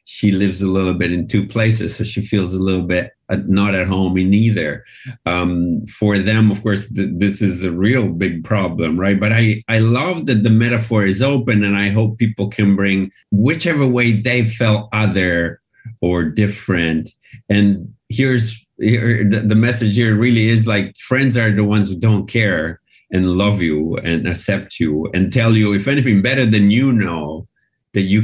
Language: German